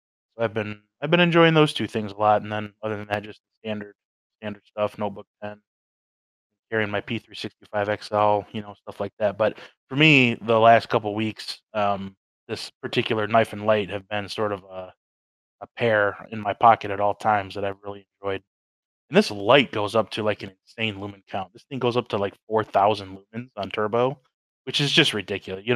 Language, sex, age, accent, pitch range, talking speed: English, male, 20-39, American, 100-115 Hz, 200 wpm